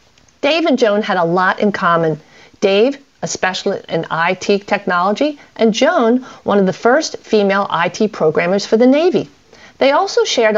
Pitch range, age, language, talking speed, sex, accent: 180-240 Hz, 40-59, English, 165 wpm, female, American